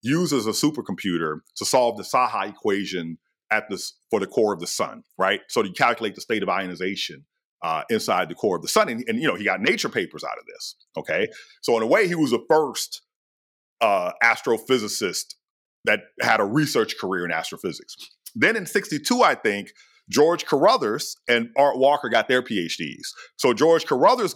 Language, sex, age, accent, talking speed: English, male, 40-59, American, 185 wpm